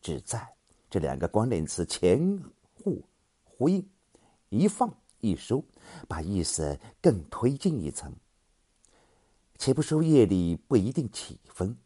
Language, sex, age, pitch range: Chinese, male, 50-69, 85-140 Hz